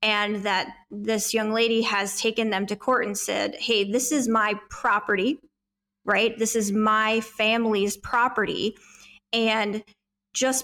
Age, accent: 20-39, American